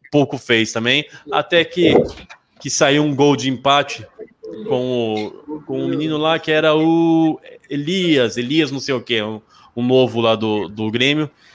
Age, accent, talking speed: 20-39, Brazilian, 175 wpm